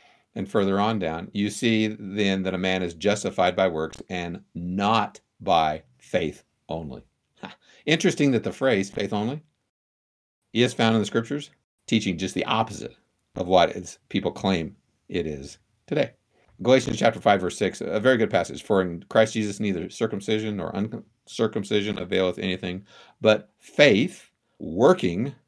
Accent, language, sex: American, English, male